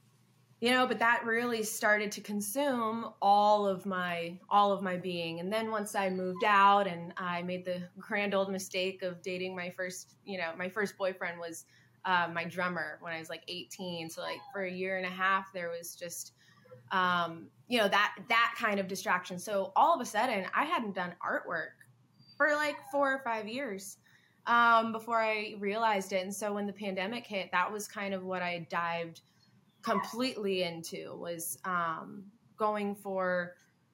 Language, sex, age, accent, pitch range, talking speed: English, female, 20-39, American, 180-210 Hz, 185 wpm